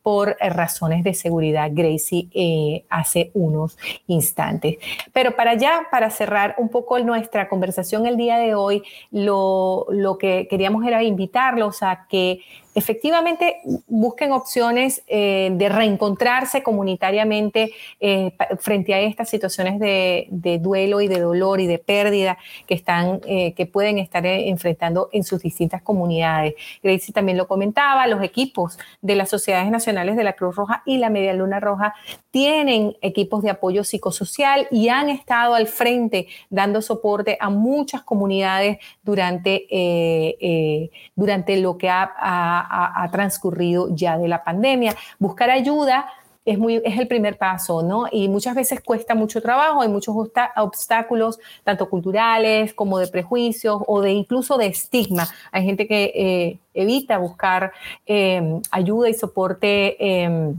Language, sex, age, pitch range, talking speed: Spanish, female, 30-49, 185-225 Hz, 145 wpm